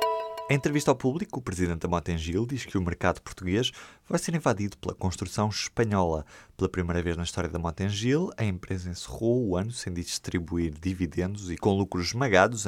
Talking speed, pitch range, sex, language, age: 180 wpm, 85-110 Hz, male, Portuguese, 20-39